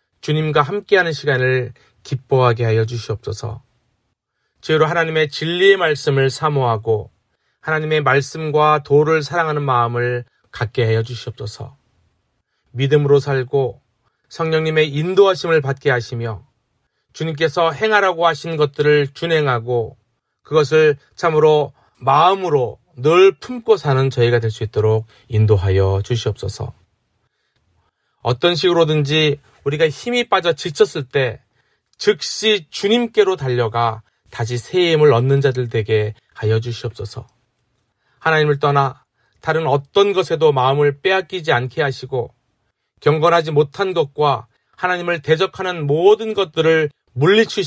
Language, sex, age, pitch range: Korean, male, 30-49, 120-160 Hz